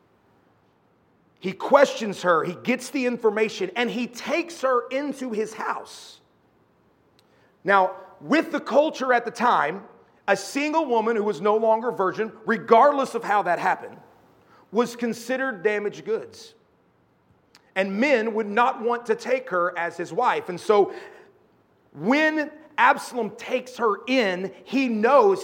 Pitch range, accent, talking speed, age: 195-270 Hz, American, 135 wpm, 40-59